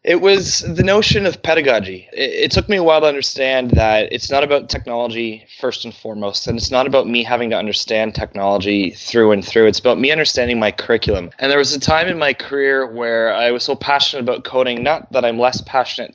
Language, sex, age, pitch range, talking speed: English, male, 20-39, 115-140 Hz, 225 wpm